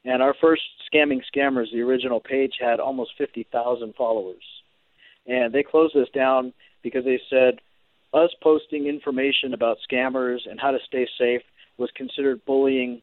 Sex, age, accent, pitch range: male, 40-59, American, 125-145 Hz